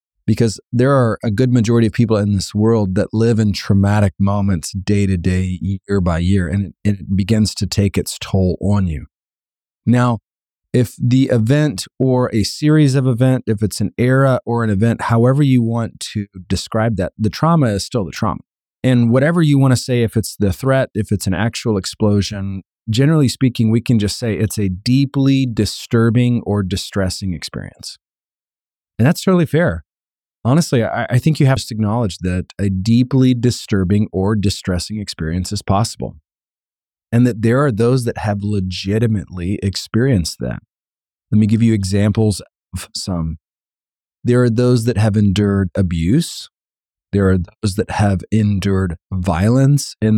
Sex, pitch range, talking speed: male, 95-120 Hz, 165 wpm